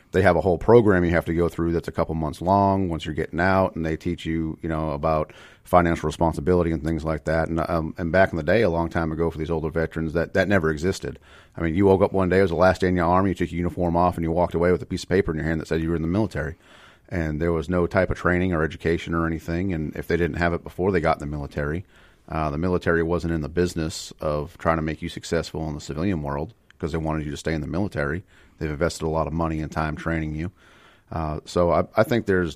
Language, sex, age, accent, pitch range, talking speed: English, male, 40-59, American, 80-90 Hz, 285 wpm